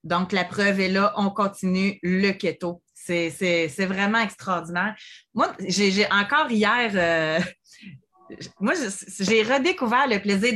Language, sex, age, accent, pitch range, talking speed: French, female, 30-49, Canadian, 185-235 Hz, 140 wpm